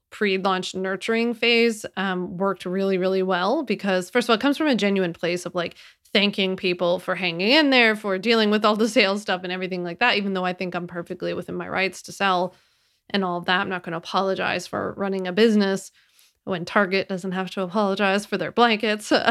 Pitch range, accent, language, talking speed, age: 185-215 Hz, American, English, 215 wpm, 30-49